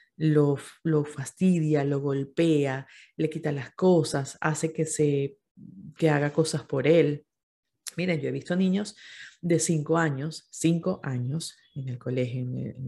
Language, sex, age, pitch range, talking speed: Spanish, female, 30-49, 140-175 Hz, 155 wpm